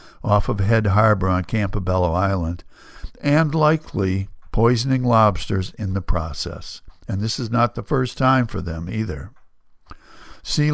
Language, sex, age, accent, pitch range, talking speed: English, male, 60-79, American, 95-125 Hz, 140 wpm